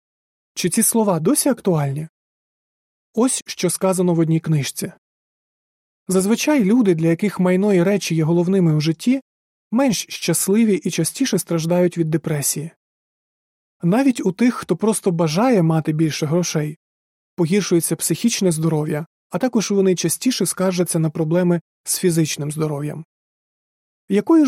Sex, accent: male, native